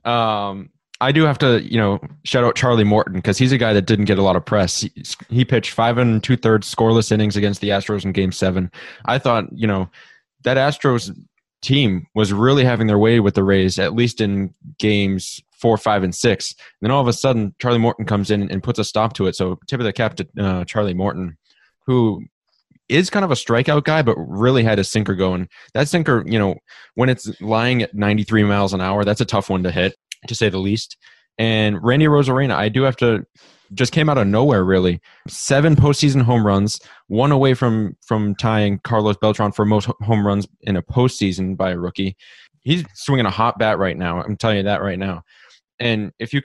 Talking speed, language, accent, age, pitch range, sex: 220 wpm, English, American, 20-39, 100-120 Hz, male